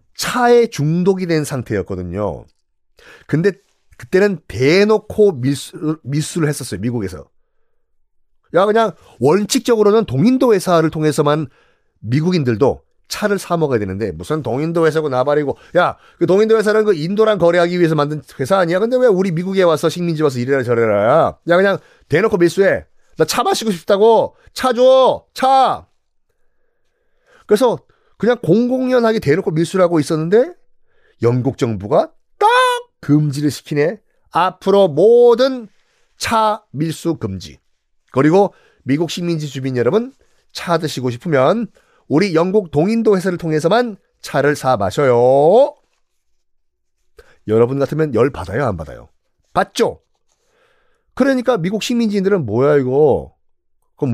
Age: 30-49